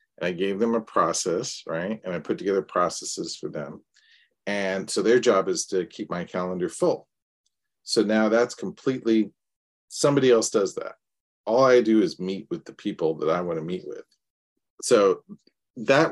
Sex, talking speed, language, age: male, 180 wpm, English, 40-59